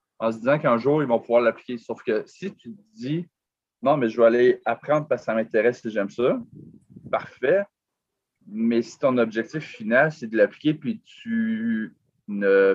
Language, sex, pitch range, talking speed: French, male, 105-145 Hz, 190 wpm